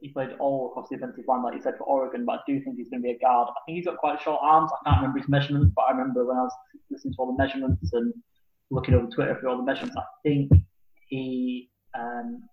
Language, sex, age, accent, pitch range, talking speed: English, male, 10-29, British, 120-140 Hz, 275 wpm